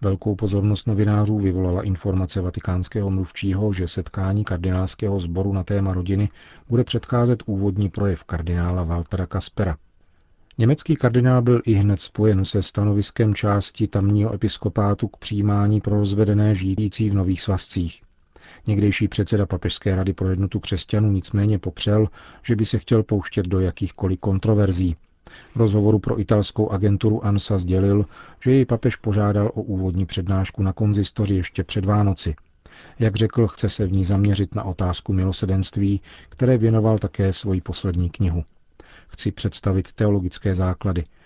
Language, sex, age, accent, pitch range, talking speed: Czech, male, 40-59, native, 95-105 Hz, 140 wpm